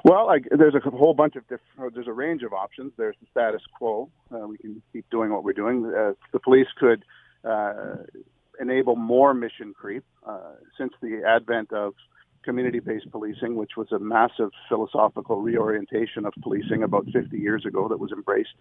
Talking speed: 175 wpm